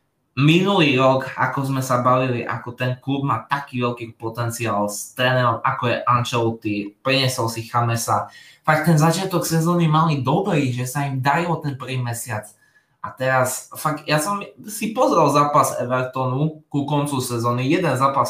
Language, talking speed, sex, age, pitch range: Slovak, 155 wpm, male, 20-39, 115-140 Hz